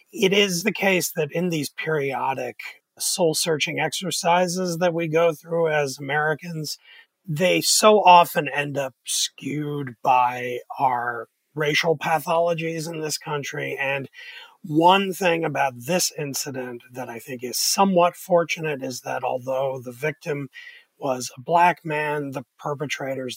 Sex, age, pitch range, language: male, 40-59, 140-180 Hz, English